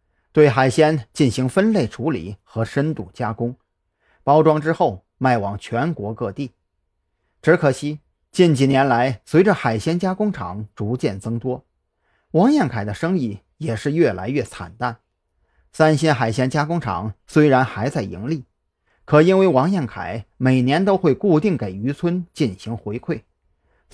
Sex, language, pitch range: male, Chinese, 105-160 Hz